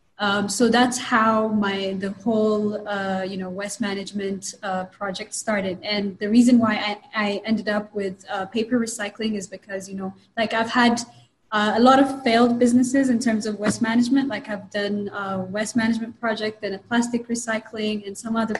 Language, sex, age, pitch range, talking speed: English, female, 20-39, 195-225 Hz, 190 wpm